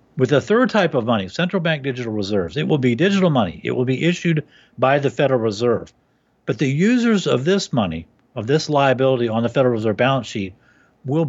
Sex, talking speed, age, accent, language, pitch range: male, 205 wpm, 50-69, American, English, 110-140 Hz